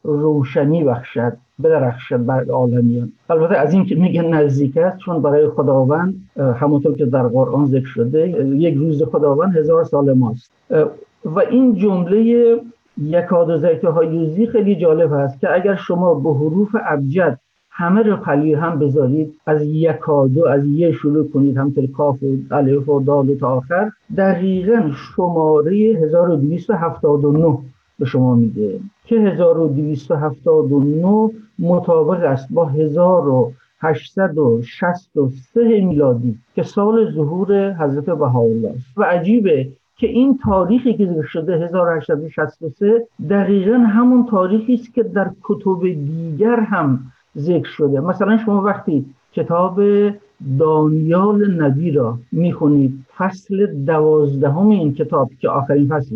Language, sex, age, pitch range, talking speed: Persian, male, 50-69, 145-195 Hz, 120 wpm